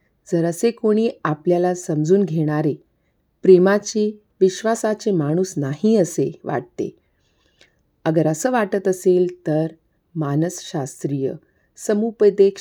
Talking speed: 70 wpm